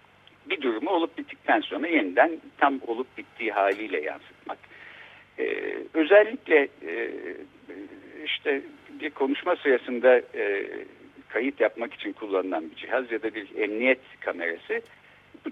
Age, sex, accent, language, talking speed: 60-79, male, native, Turkish, 120 wpm